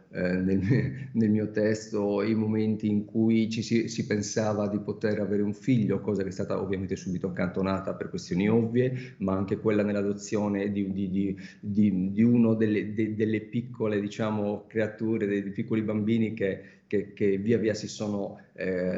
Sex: male